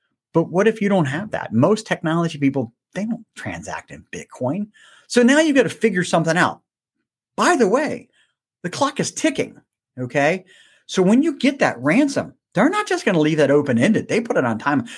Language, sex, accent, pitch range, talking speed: English, male, American, 130-195 Hz, 200 wpm